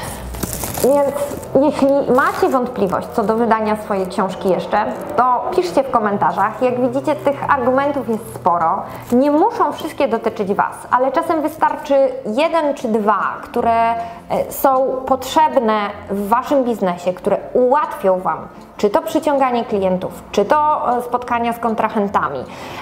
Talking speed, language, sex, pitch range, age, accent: 130 wpm, Polish, female, 205-280 Hz, 20-39, native